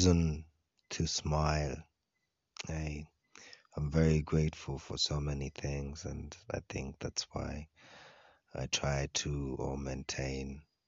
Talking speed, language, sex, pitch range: 105 wpm, English, male, 70-80 Hz